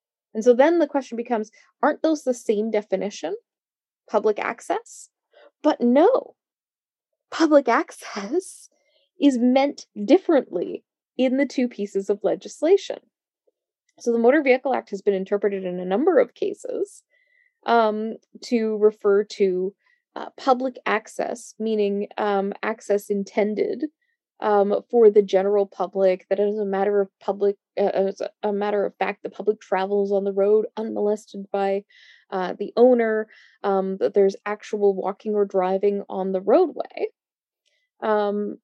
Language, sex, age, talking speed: English, female, 10-29, 140 wpm